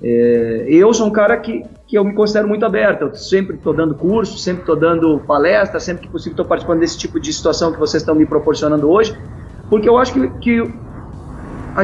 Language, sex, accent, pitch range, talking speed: Portuguese, male, Brazilian, 160-225 Hz, 215 wpm